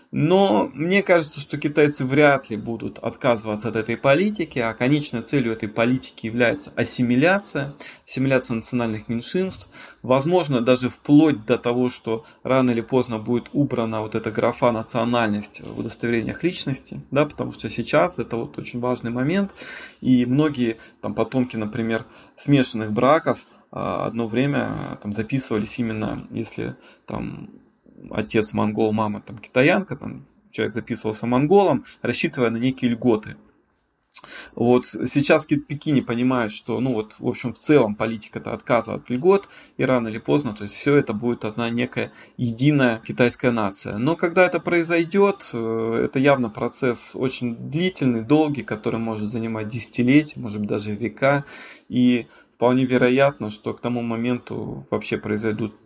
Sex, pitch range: male, 110-140 Hz